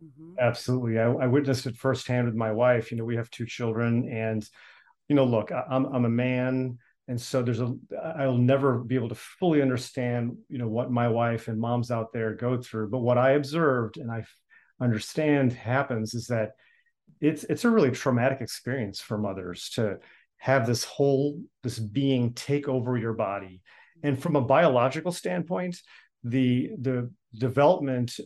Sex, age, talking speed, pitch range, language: male, 40-59, 170 wpm, 115-140 Hz, English